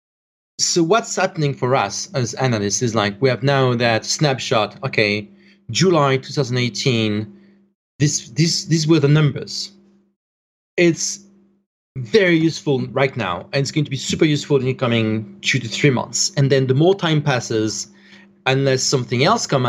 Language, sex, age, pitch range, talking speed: English, male, 30-49, 125-185 Hz, 160 wpm